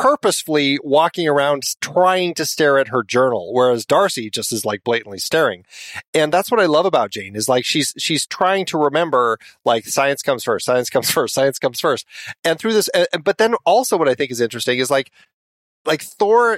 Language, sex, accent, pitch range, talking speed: English, male, American, 125-175 Hz, 205 wpm